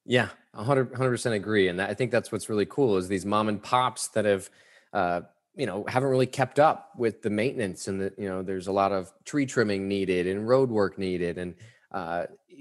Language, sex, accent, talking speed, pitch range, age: English, male, American, 220 wpm, 105-130 Hz, 20-39